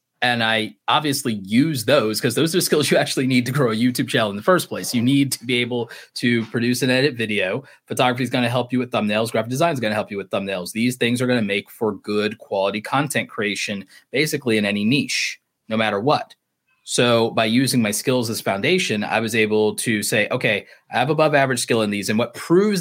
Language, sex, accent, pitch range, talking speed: English, male, American, 110-135 Hz, 235 wpm